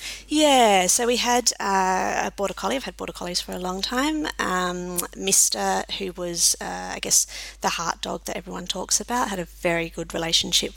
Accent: Australian